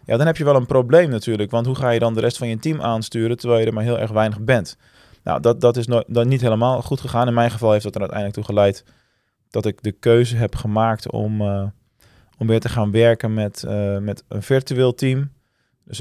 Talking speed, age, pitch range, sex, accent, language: 245 wpm, 20-39, 105-125 Hz, male, Dutch, Dutch